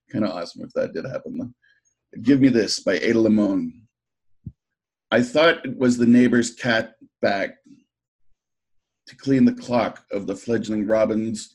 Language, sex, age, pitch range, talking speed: English, male, 50-69, 105-120 Hz, 150 wpm